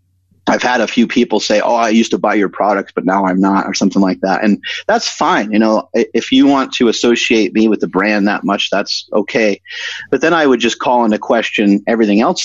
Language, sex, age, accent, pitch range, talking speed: English, male, 30-49, American, 100-130 Hz, 235 wpm